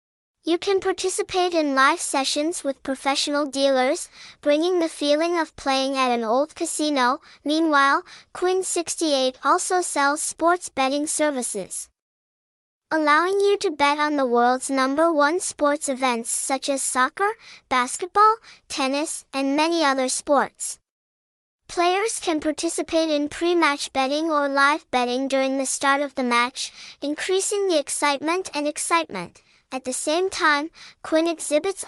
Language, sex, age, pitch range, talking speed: English, male, 10-29, 270-335 Hz, 135 wpm